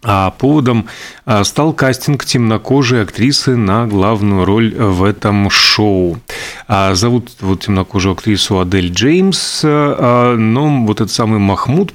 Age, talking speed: 30-49, 110 wpm